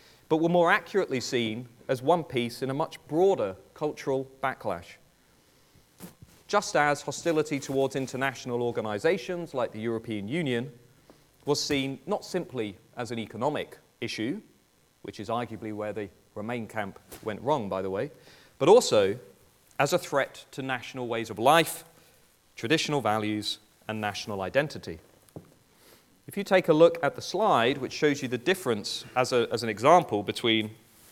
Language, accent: English, British